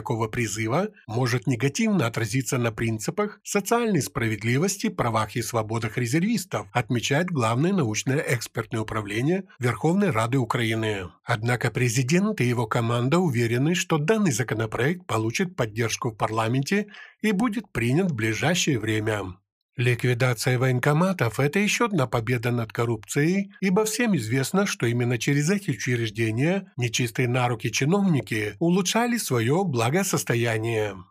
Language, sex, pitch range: Ukrainian, male, 115-170 Hz